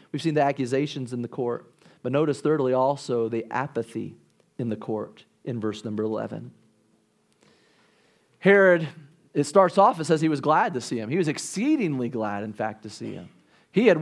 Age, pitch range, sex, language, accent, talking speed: 40-59, 135-195 Hz, male, English, American, 185 wpm